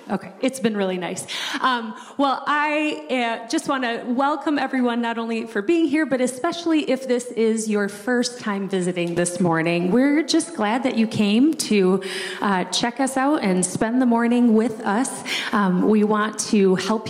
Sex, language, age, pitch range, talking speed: female, English, 30-49, 200-255 Hz, 185 wpm